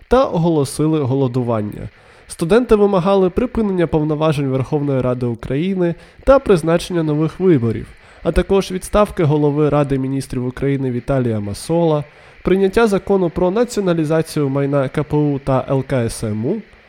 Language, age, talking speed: Ukrainian, 20-39, 110 wpm